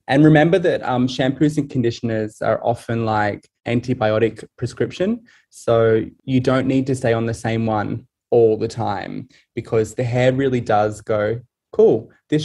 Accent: Australian